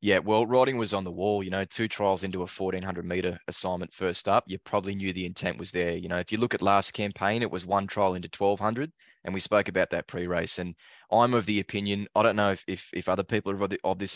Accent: Australian